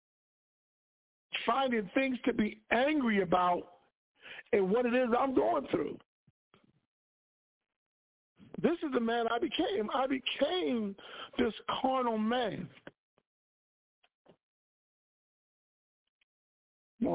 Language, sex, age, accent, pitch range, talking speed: English, male, 50-69, American, 190-255 Hz, 90 wpm